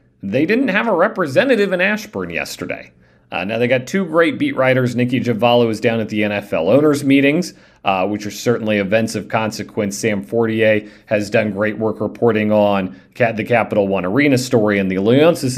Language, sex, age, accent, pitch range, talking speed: English, male, 40-59, American, 100-130 Hz, 185 wpm